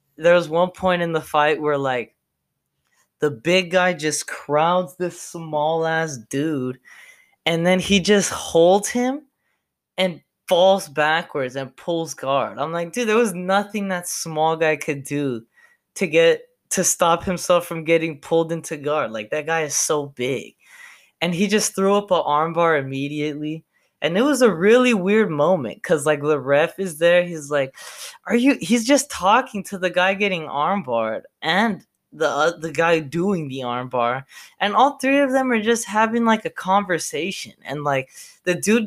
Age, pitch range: 20-39, 150-195 Hz